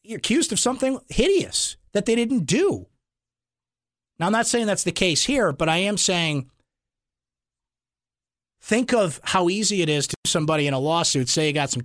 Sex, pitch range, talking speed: male, 130-165 Hz, 180 wpm